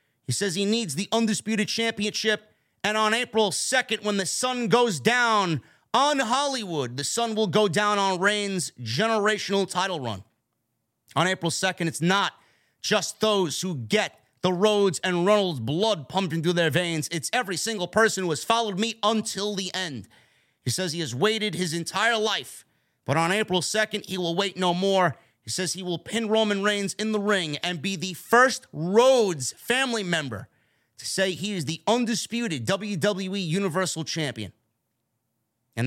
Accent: American